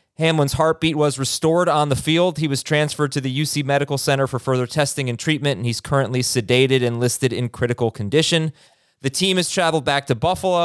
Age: 30-49